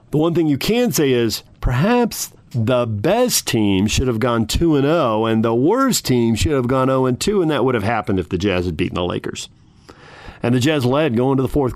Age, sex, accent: 50-69, male, American